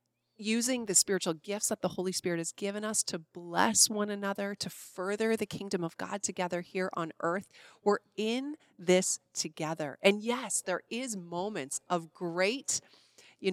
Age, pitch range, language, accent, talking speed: 30-49, 170-205 Hz, English, American, 165 wpm